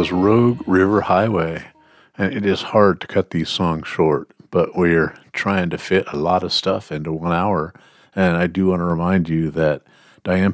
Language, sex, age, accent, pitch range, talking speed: English, male, 50-69, American, 80-95 Hz, 190 wpm